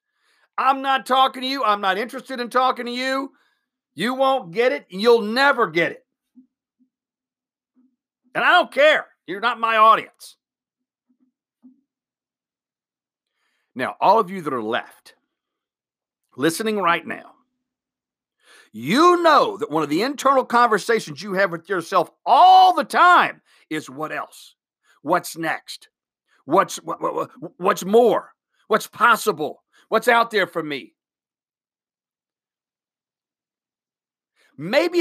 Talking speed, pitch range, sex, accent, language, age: 120 wpm, 210-275 Hz, male, American, English, 50-69